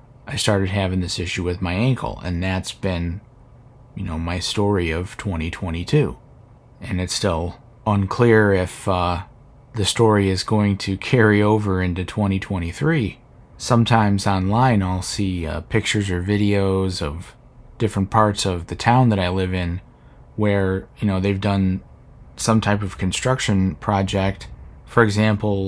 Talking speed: 145 wpm